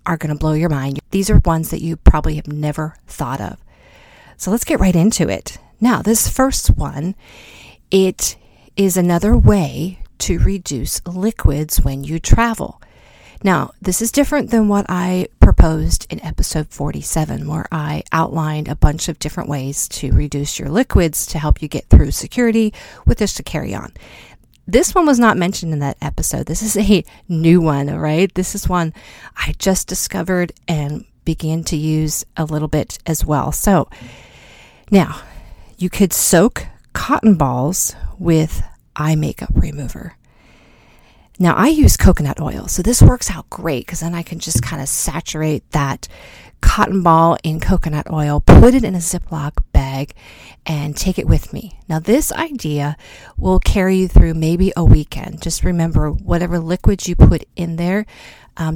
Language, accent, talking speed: English, American, 165 wpm